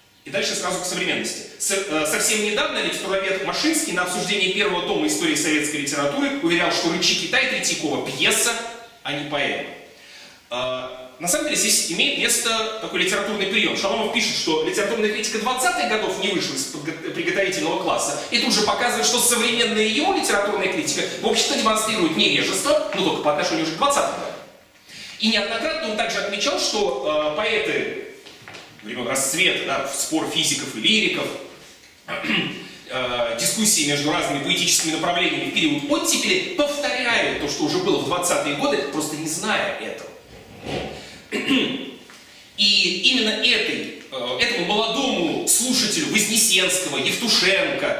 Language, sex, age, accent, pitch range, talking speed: Russian, male, 30-49, native, 180-260 Hz, 135 wpm